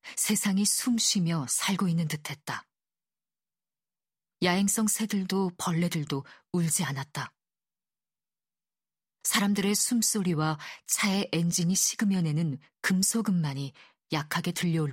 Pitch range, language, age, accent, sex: 155-195 Hz, Korean, 40-59, native, female